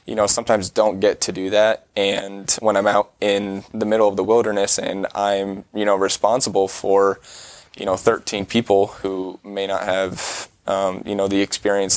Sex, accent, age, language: male, American, 10-29, English